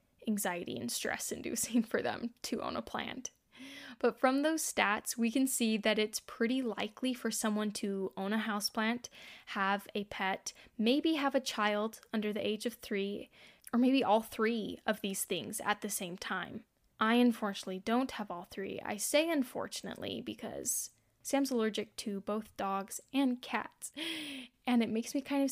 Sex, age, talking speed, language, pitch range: female, 10-29, 170 wpm, English, 205-250 Hz